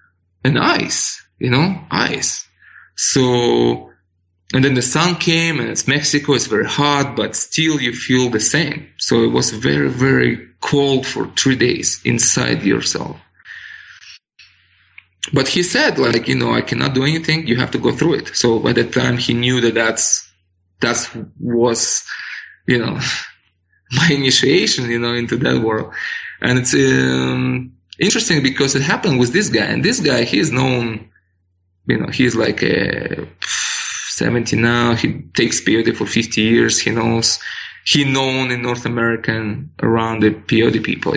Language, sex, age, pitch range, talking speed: English, male, 20-39, 110-140 Hz, 155 wpm